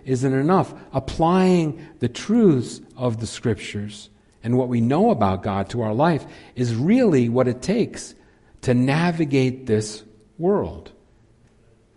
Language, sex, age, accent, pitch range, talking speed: English, male, 50-69, American, 100-130 Hz, 130 wpm